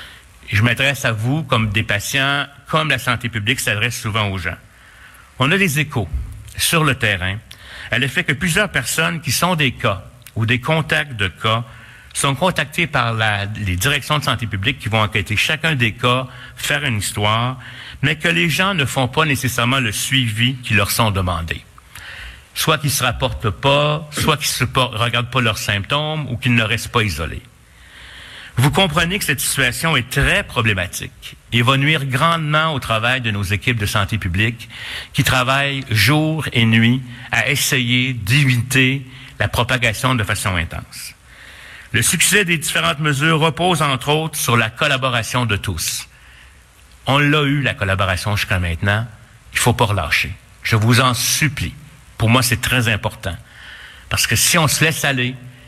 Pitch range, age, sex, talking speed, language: 110-140 Hz, 60-79, male, 170 wpm, French